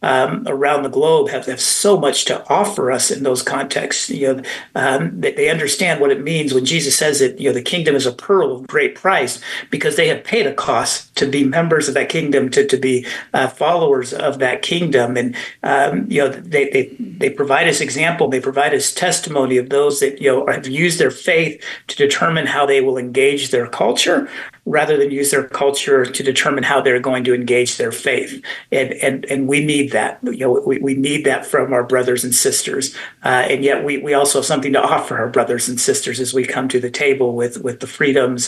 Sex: male